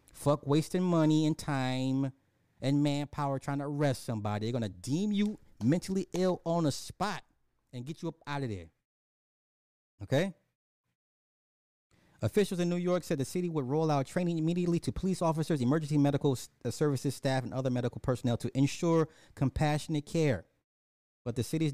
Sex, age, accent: male, 30-49, American